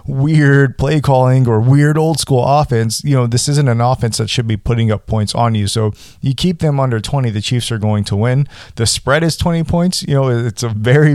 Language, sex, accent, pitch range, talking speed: English, male, American, 110-135 Hz, 235 wpm